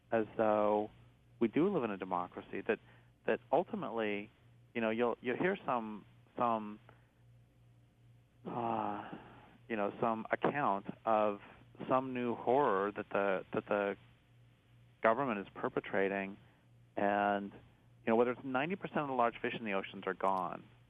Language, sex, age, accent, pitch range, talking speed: English, male, 40-59, American, 105-125 Hz, 140 wpm